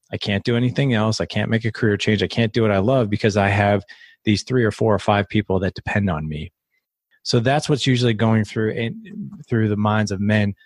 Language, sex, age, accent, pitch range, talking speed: English, male, 30-49, American, 105-125 Hz, 240 wpm